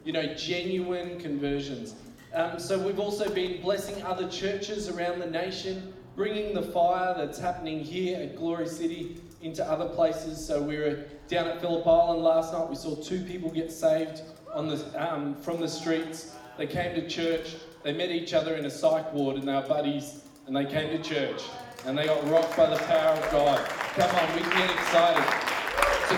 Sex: male